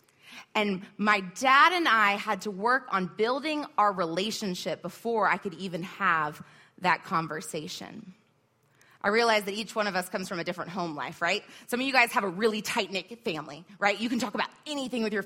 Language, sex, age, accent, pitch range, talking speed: English, female, 20-39, American, 190-260 Hz, 195 wpm